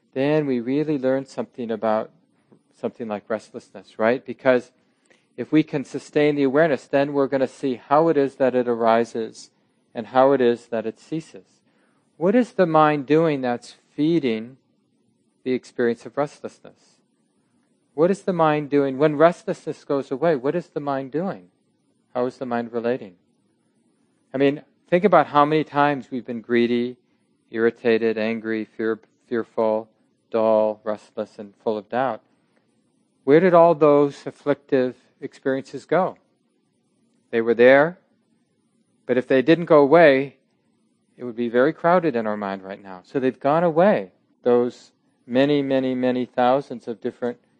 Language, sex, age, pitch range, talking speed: English, male, 40-59, 120-150 Hz, 155 wpm